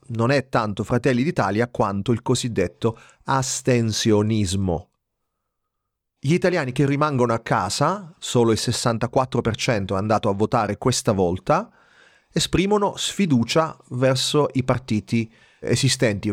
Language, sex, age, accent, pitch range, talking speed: Italian, male, 30-49, native, 105-130 Hz, 110 wpm